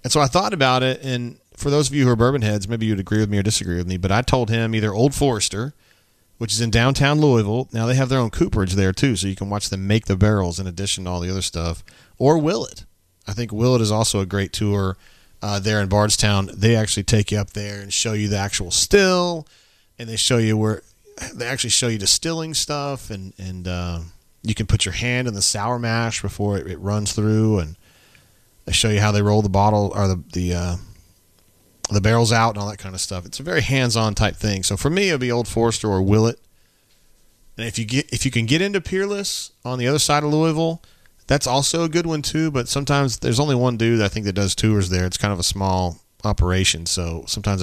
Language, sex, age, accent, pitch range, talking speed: English, male, 30-49, American, 95-120 Hz, 245 wpm